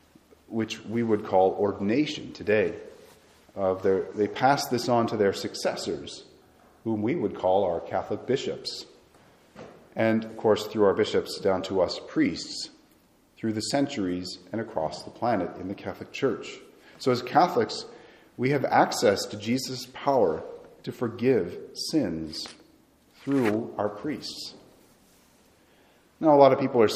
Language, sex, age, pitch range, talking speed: English, male, 40-59, 100-140 Hz, 140 wpm